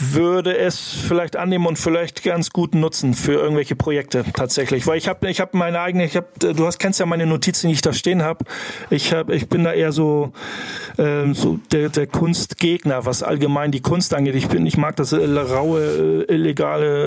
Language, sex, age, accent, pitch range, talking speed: German, male, 40-59, German, 145-170 Hz, 200 wpm